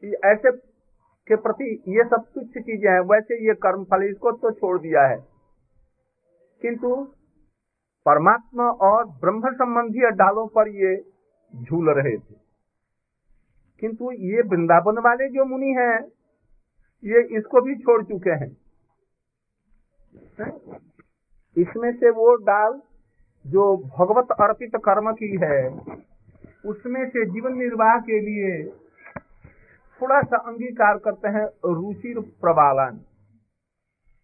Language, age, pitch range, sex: Hindi, 50-69, 170-235 Hz, male